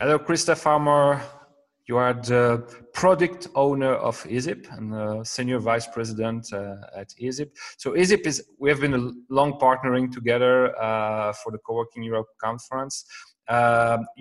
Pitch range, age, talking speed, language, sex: 120-150 Hz, 30-49, 150 wpm, English, male